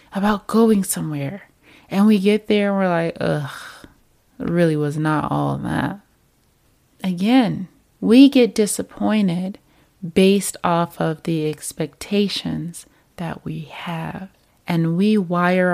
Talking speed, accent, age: 120 wpm, American, 20-39